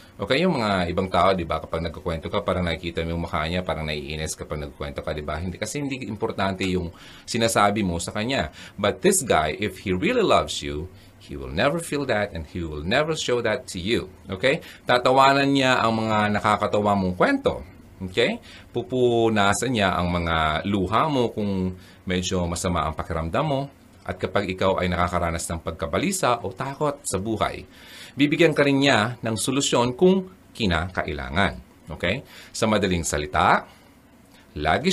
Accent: native